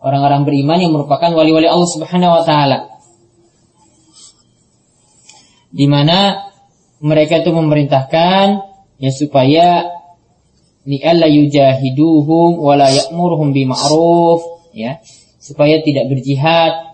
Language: Malay